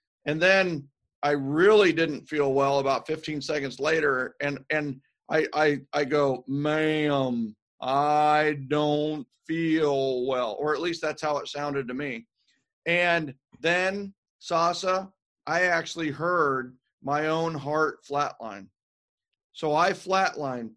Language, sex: Croatian, male